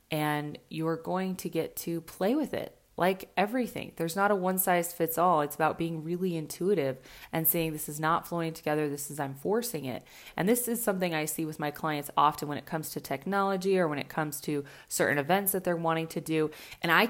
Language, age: English, 20-39